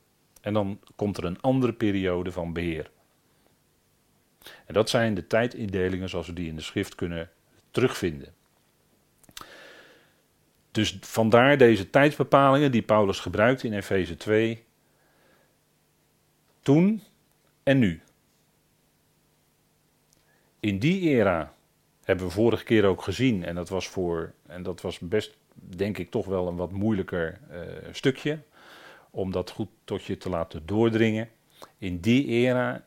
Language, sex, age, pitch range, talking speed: Dutch, male, 40-59, 95-125 Hz, 130 wpm